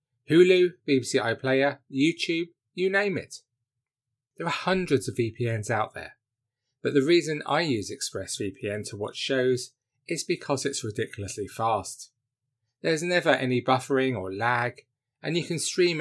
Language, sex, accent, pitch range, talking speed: English, male, British, 120-150 Hz, 140 wpm